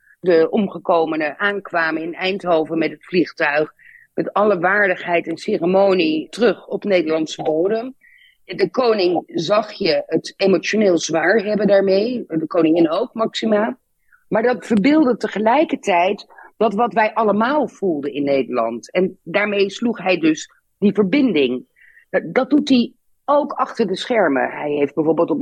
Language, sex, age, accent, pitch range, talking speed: Dutch, female, 40-59, Dutch, 165-220 Hz, 140 wpm